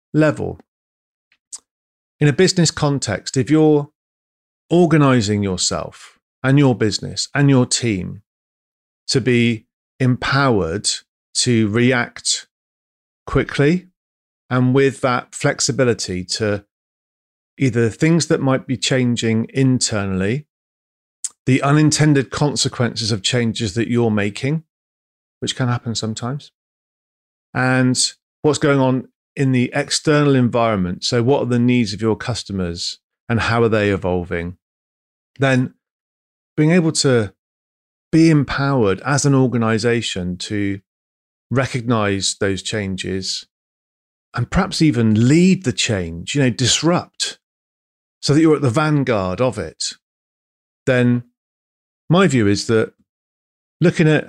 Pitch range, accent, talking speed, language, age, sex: 100-135 Hz, British, 115 wpm, English, 40-59, male